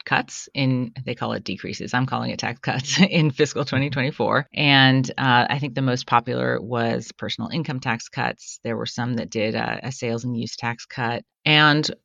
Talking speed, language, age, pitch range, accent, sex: 195 wpm, English, 30-49, 115-140 Hz, American, female